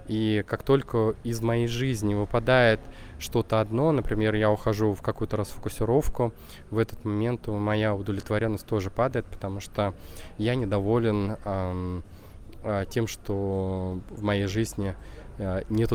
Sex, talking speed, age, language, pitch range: male, 125 wpm, 20-39, Russian, 100-115 Hz